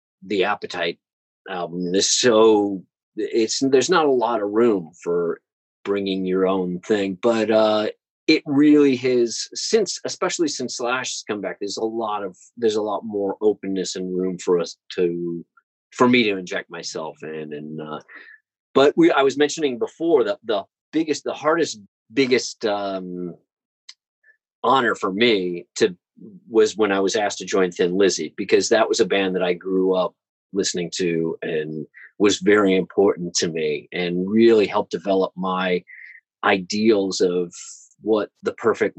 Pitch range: 95-145 Hz